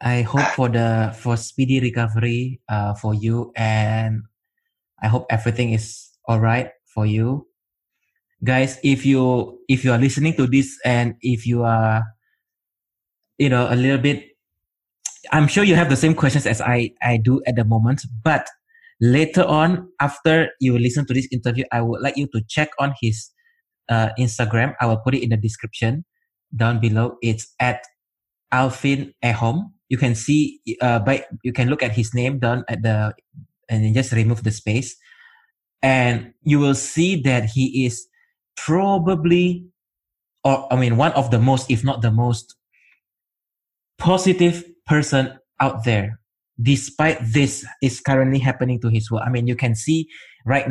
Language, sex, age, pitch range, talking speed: English, male, 20-39, 115-140 Hz, 165 wpm